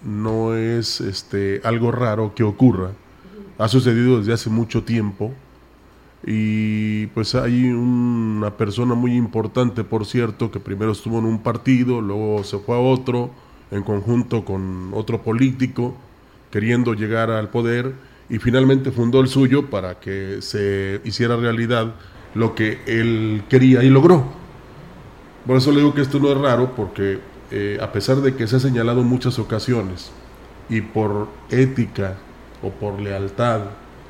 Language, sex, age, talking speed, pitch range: Spanish, male, 30-49, 150 wpm, 105-130 Hz